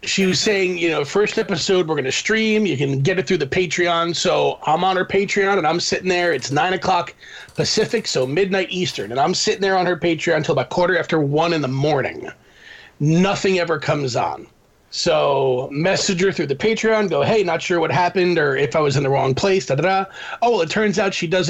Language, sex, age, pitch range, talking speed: English, male, 30-49, 160-195 Hz, 230 wpm